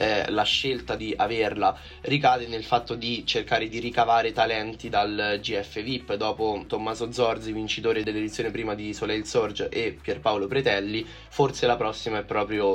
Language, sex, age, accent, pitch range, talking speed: Italian, male, 20-39, native, 110-120 Hz, 150 wpm